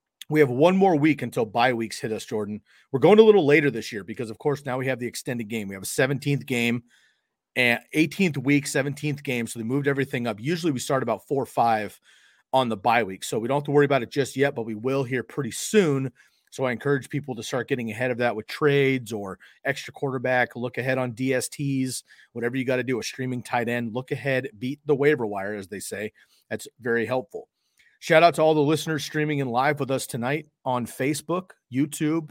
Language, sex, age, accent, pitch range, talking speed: English, male, 40-59, American, 120-150 Hz, 230 wpm